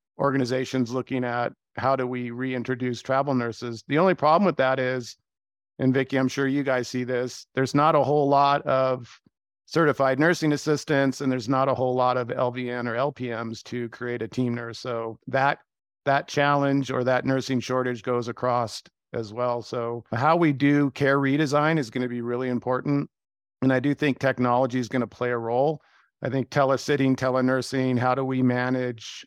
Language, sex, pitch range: English, male, 120-135 Hz